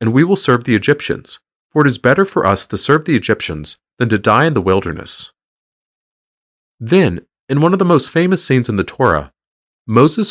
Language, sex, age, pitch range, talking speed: English, male, 30-49, 100-165 Hz, 200 wpm